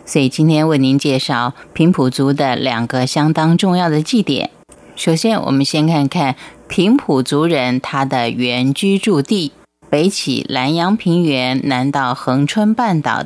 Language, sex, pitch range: Japanese, female, 135-180 Hz